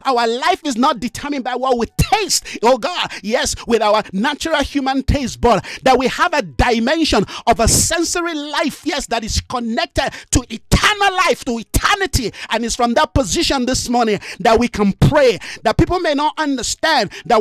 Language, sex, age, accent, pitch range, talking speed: English, male, 50-69, Nigerian, 240-325 Hz, 185 wpm